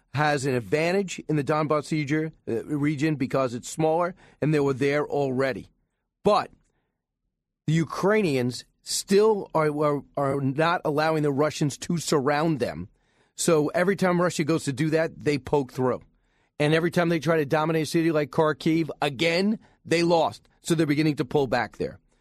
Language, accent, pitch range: English, American, 145-175 Hz